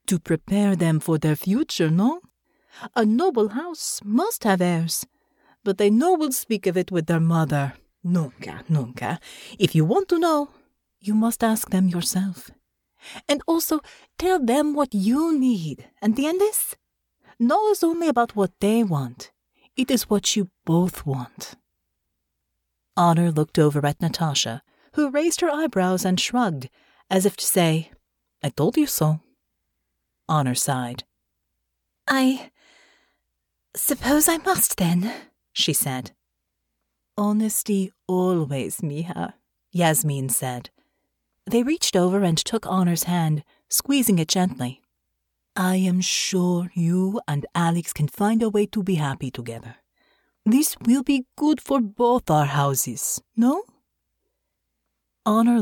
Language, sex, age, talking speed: English, female, 40-59, 135 wpm